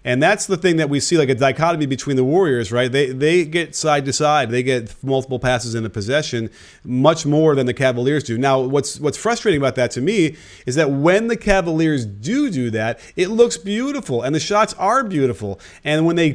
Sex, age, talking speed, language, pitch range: male, 30-49, 215 wpm, English, 130-175 Hz